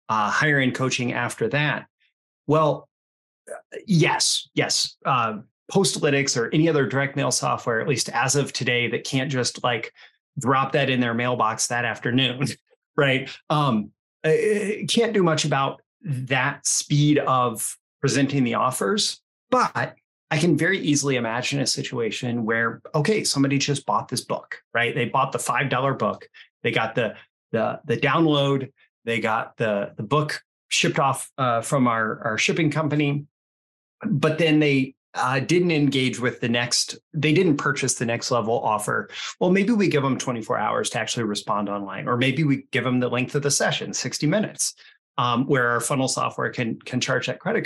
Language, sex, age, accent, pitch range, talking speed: English, male, 30-49, American, 120-155 Hz, 170 wpm